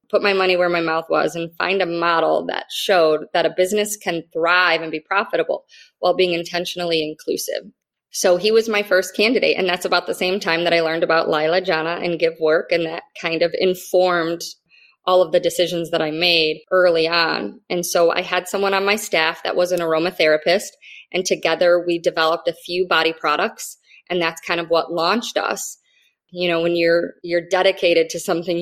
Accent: American